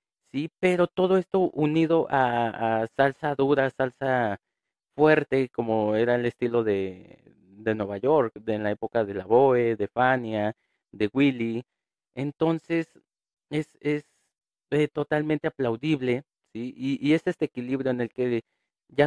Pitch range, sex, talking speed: 115-150 Hz, male, 145 wpm